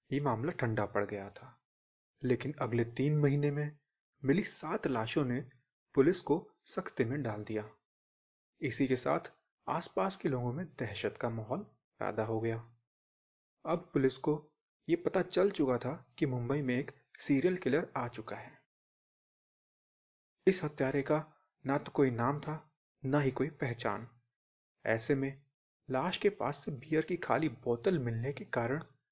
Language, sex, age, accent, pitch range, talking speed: Hindi, male, 30-49, native, 120-155 Hz, 155 wpm